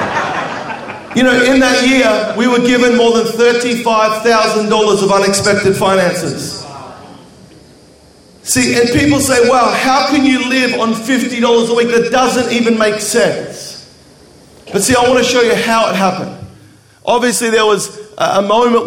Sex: male